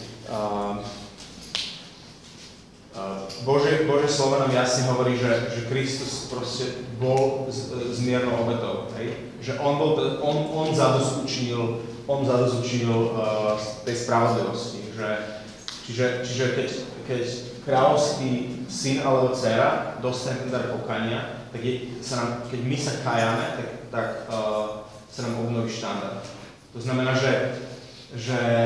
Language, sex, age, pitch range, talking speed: Slovak, male, 30-49, 115-135 Hz, 115 wpm